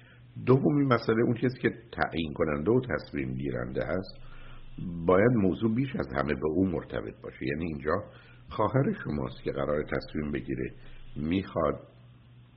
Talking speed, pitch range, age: 140 wpm, 70-120 Hz, 60-79